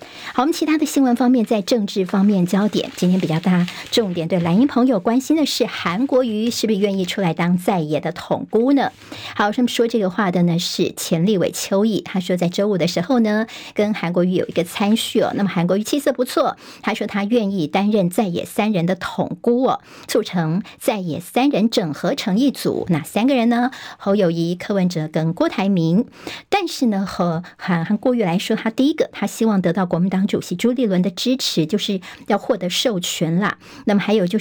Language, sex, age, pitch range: Chinese, male, 50-69, 185-240 Hz